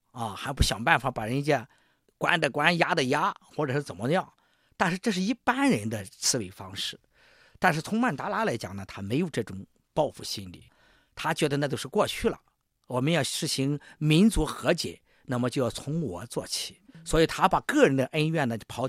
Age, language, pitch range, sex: 50-69, Chinese, 125-170 Hz, male